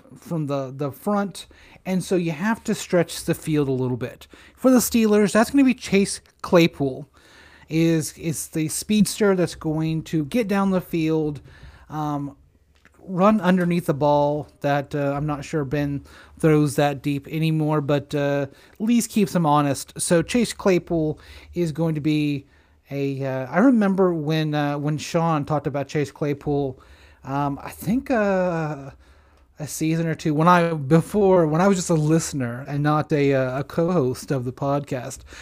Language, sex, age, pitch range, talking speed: English, male, 30-49, 140-165 Hz, 175 wpm